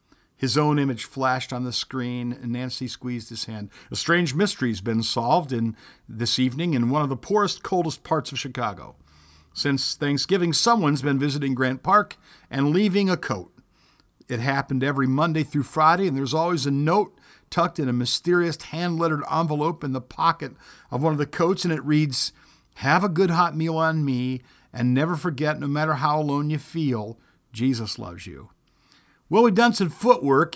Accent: American